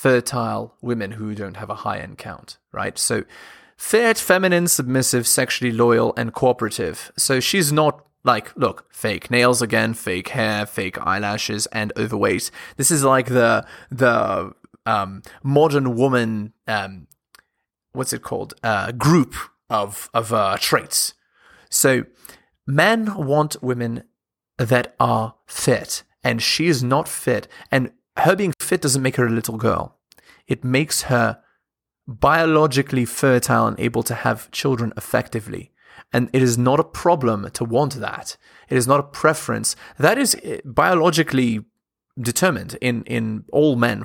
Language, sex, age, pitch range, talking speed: English, male, 30-49, 115-140 Hz, 140 wpm